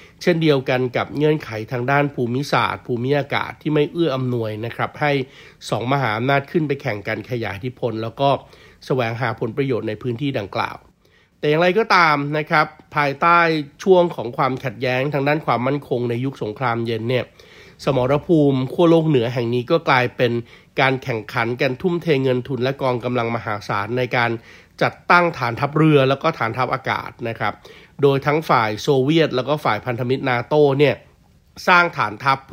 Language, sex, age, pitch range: Thai, male, 60-79, 120-150 Hz